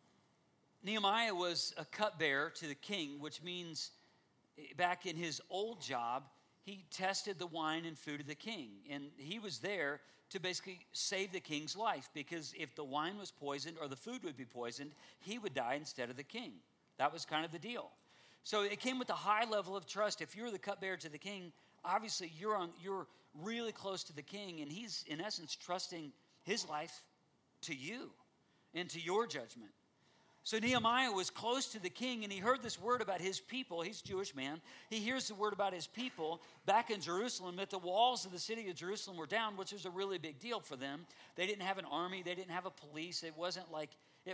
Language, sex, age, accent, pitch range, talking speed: English, male, 50-69, American, 160-210 Hz, 210 wpm